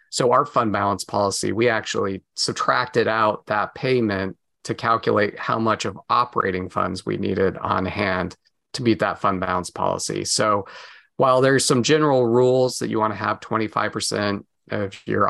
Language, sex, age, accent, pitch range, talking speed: English, male, 30-49, American, 100-115 Hz, 165 wpm